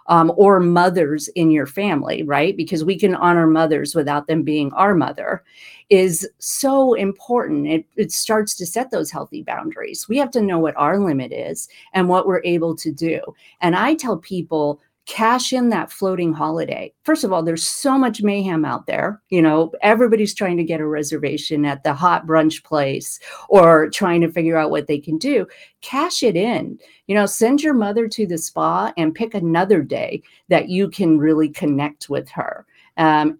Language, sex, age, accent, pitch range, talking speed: English, female, 50-69, American, 155-200 Hz, 190 wpm